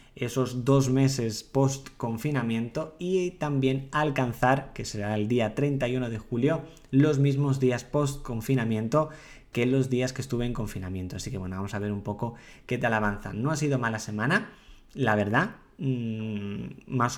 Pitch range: 115-135 Hz